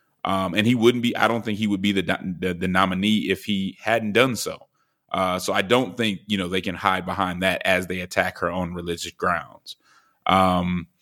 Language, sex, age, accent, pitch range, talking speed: English, male, 30-49, American, 90-105 Hz, 220 wpm